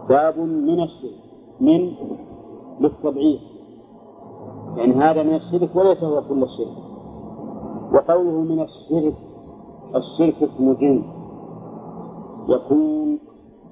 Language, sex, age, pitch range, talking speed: Arabic, male, 50-69, 135-165 Hz, 85 wpm